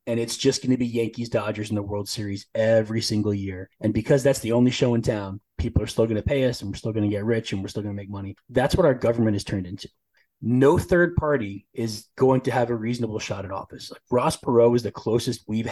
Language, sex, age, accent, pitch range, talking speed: English, male, 30-49, American, 110-145 Hz, 265 wpm